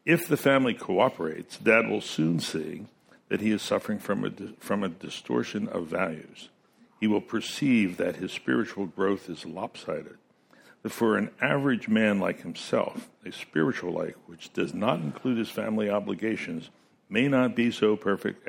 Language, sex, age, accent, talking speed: English, male, 60-79, American, 165 wpm